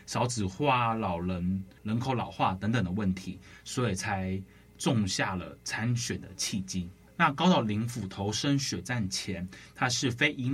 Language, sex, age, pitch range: Chinese, male, 20-39, 100-135 Hz